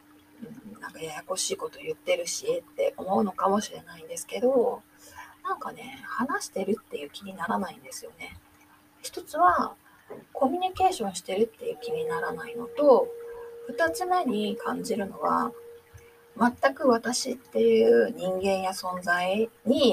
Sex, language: female, Japanese